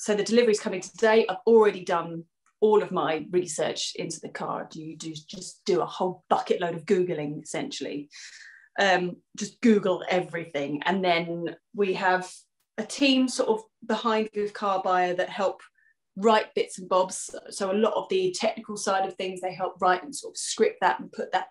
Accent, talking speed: British, 195 wpm